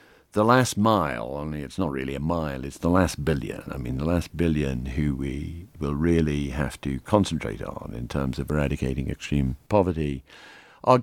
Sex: male